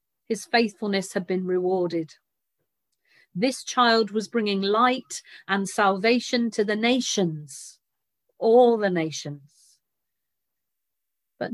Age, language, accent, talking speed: 40-59, English, British, 100 wpm